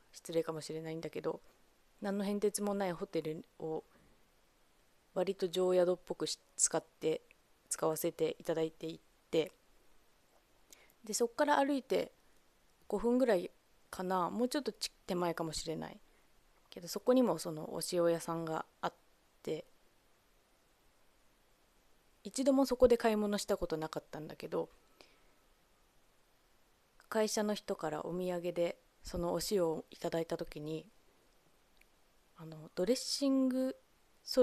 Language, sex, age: Japanese, female, 20-39